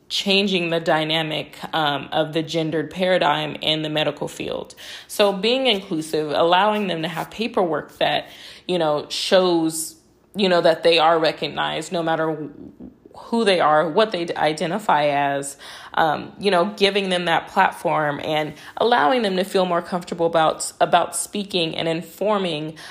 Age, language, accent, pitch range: 20-39, English, American, 160-200 Hz